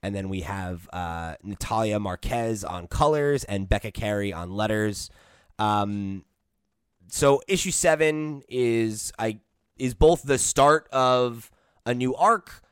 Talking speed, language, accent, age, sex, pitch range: 130 wpm, English, American, 20-39, male, 100-120 Hz